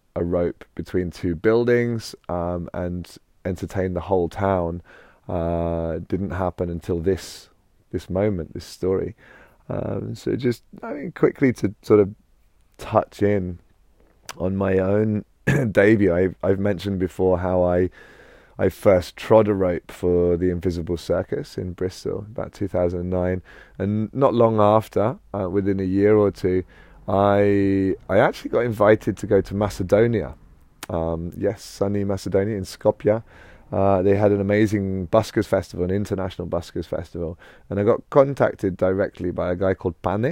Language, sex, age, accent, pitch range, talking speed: English, male, 30-49, British, 90-100 Hz, 150 wpm